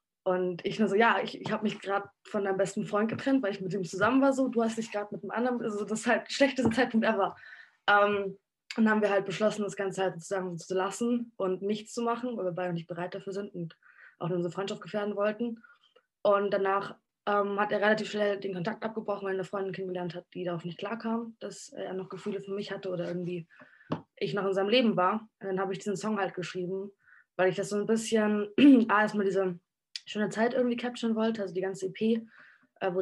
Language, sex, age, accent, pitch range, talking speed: German, female, 20-39, German, 185-215 Hz, 240 wpm